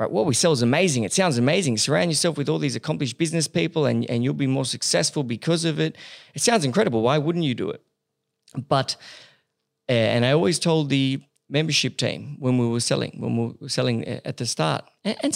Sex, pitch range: male, 130-170 Hz